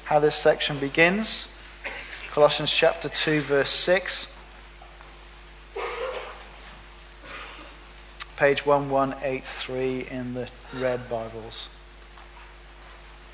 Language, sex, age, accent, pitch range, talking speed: English, male, 40-59, British, 150-195 Hz, 65 wpm